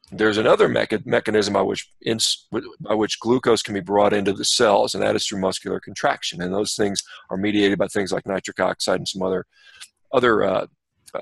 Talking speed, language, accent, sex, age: 195 wpm, English, American, male, 40-59